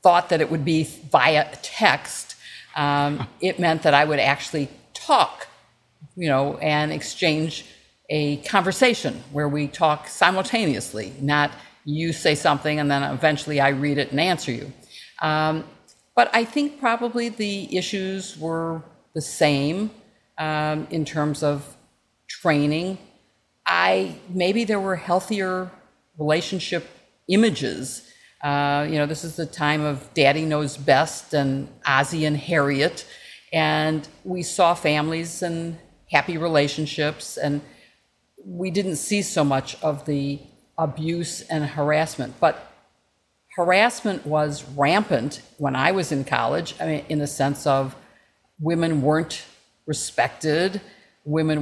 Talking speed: 130 wpm